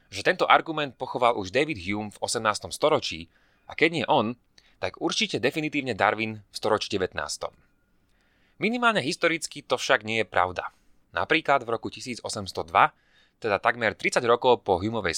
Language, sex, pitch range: Slovak, male, 100-145 Hz